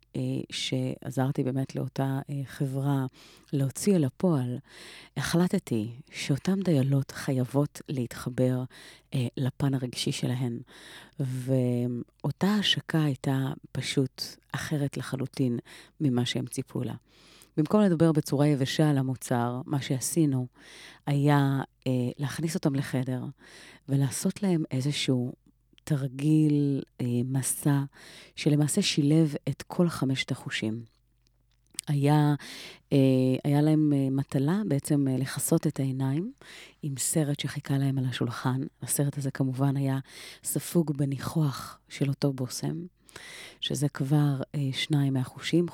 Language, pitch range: Hebrew, 130-150 Hz